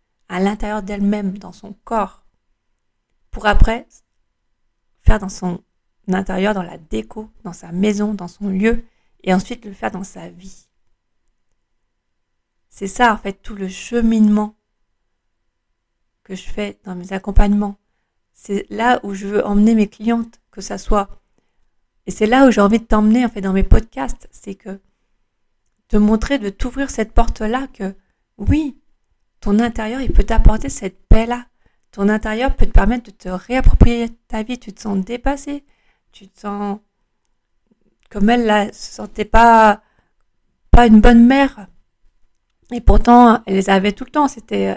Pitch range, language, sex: 190-230 Hz, French, female